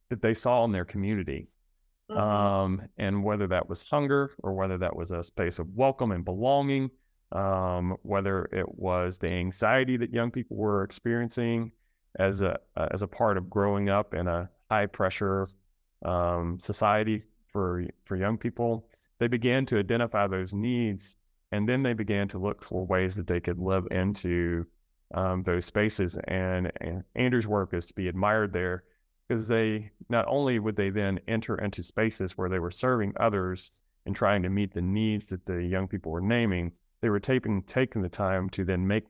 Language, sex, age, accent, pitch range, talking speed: English, male, 30-49, American, 90-105 Hz, 180 wpm